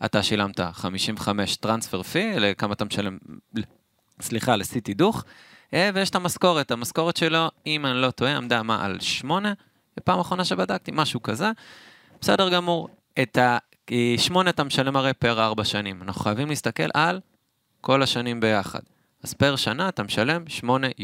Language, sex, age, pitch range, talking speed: Hebrew, male, 20-39, 110-160 Hz, 145 wpm